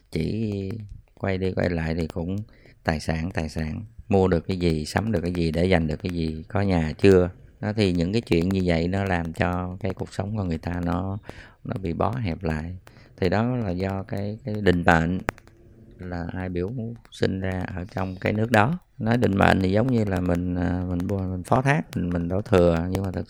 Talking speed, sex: 220 wpm, male